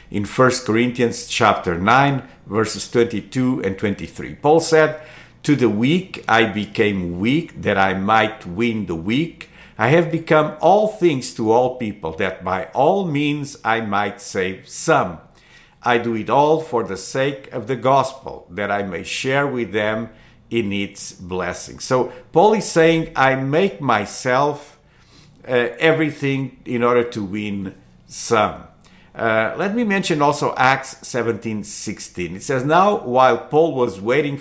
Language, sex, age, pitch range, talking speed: English, male, 50-69, 110-155 Hz, 150 wpm